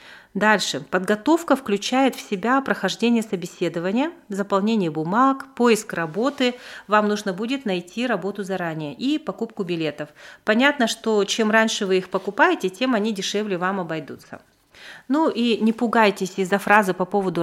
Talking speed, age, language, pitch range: 140 wpm, 40-59, Russian, 185-235 Hz